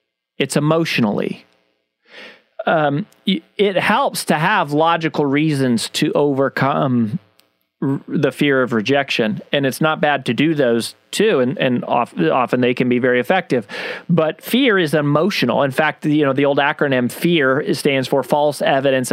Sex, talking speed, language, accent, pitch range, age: male, 150 wpm, English, American, 135-180 Hz, 40-59